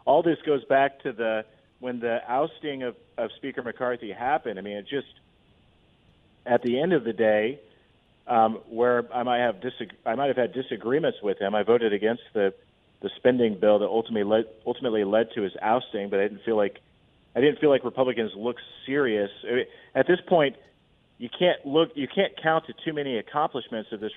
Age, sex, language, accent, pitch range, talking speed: 40-59, male, English, American, 115-140 Hz, 200 wpm